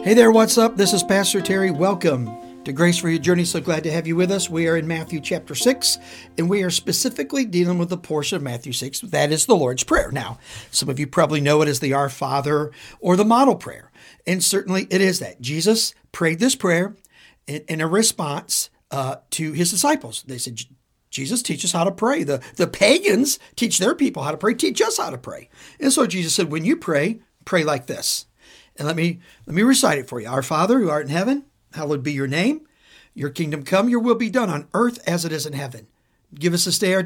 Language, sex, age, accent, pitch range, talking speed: English, male, 60-79, American, 145-200 Hz, 235 wpm